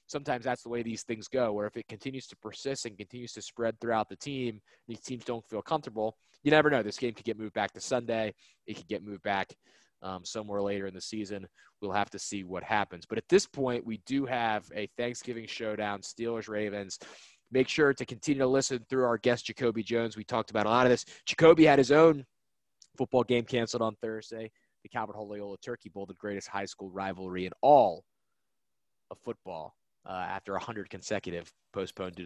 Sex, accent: male, American